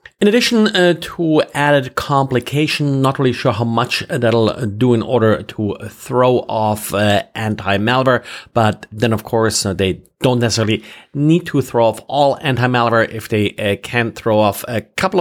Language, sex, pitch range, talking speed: English, male, 110-145 Hz, 170 wpm